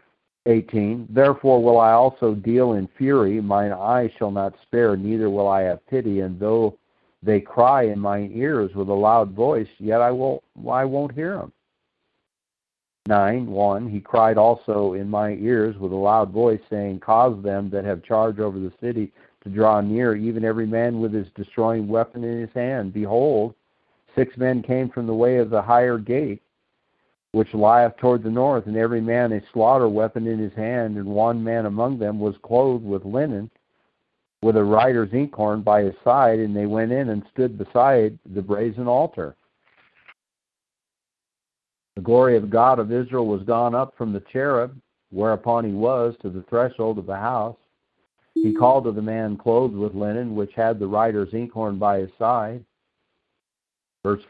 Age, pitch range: 50-69, 105-120 Hz